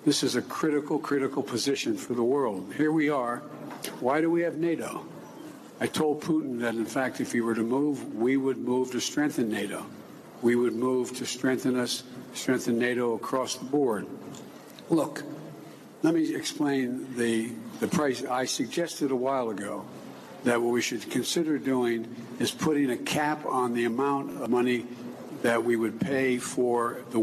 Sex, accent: male, American